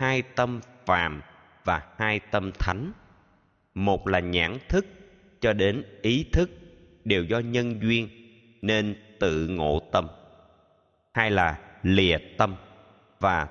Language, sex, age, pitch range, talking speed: Vietnamese, male, 20-39, 90-125 Hz, 125 wpm